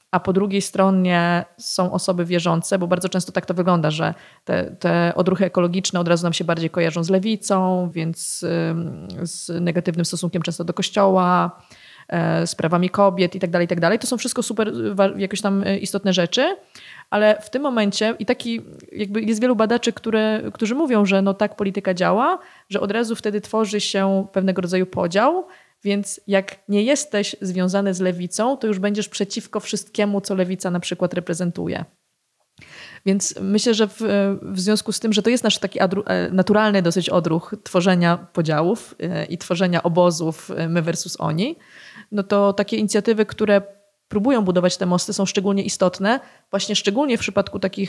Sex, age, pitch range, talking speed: female, 20-39, 180-210 Hz, 160 wpm